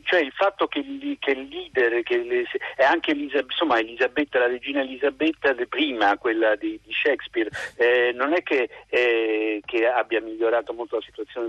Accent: native